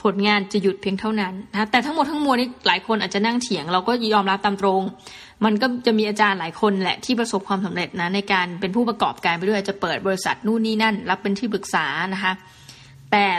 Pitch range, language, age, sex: 190-225 Hz, Thai, 20-39, female